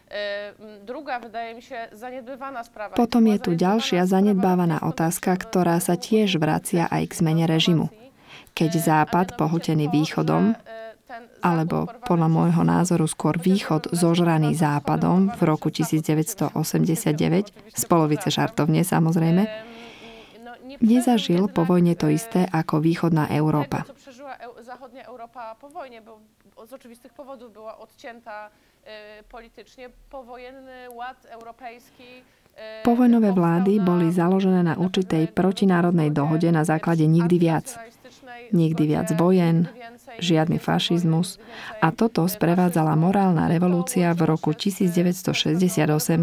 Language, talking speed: Slovak, 85 wpm